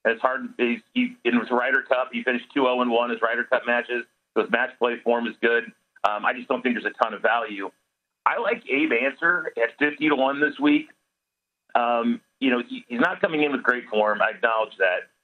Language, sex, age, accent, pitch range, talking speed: English, male, 40-59, American, 120-155 Hz, 235 wpm